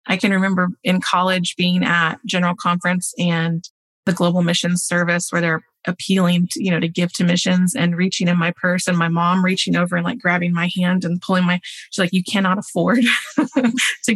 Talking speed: 205 wpm